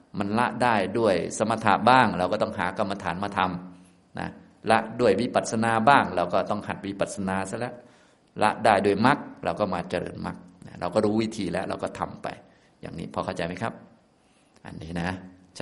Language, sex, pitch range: Thai, male, 95-115 Hz